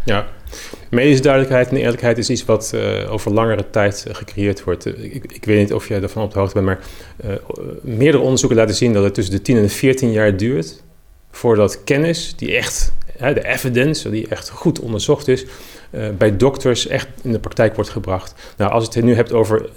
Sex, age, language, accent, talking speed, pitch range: male, 40-59, Dutch, Dutch, 205 wpm, 100-120 Hz